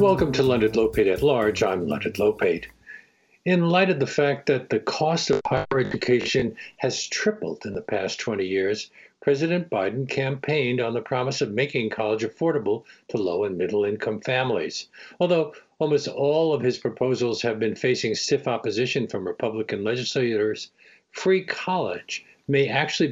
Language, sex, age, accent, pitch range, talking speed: English, male, 60-79, American, 115-155 Hz, 160 wpm